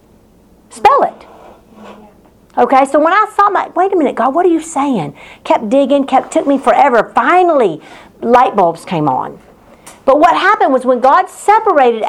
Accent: American